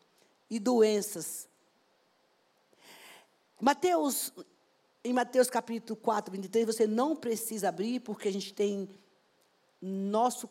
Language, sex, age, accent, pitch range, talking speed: Portuguese, female, 50-69, Brazilian, 205-255 Hz, 95 wpm